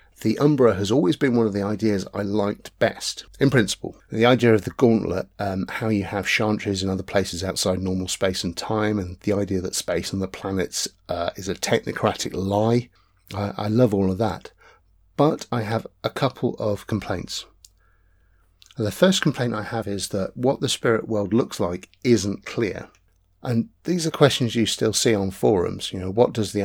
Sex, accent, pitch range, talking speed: male, British, 95-115 Hz, 195 wpm